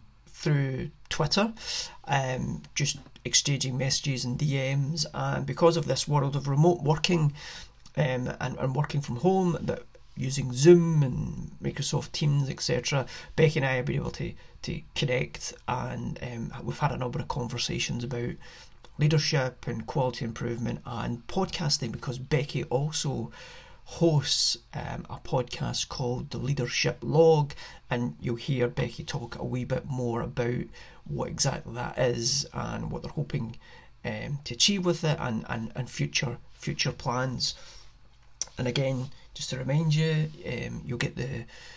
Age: 40-59